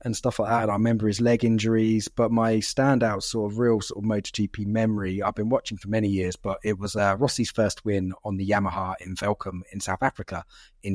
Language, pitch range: English, 100-120 Hz